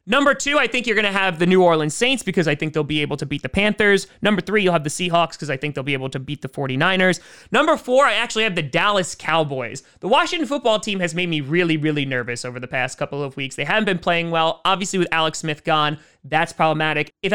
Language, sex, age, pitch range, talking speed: English, male, 20-39, 150-200 Hz, 260 wpm